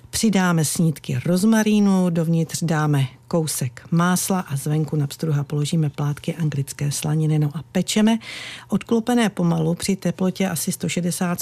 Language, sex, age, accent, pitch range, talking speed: Czech, female, 50-69, native, 150-180 Hz, 115 wpm